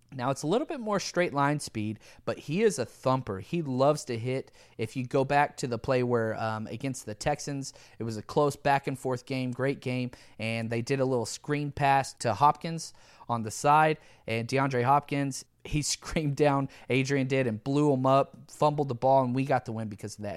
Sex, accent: male, American